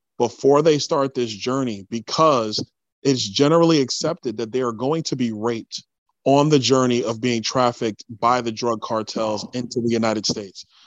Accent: American